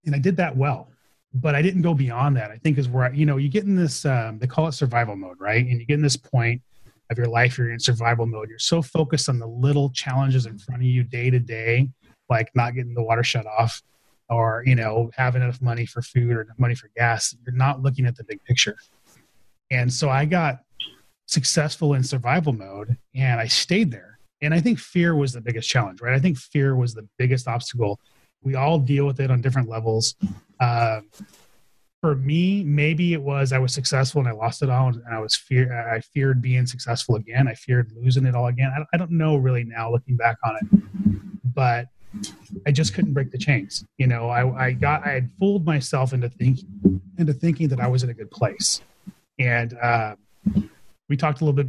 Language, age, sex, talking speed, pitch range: English, 30-49, male, 215 wpm, 120-145 Hz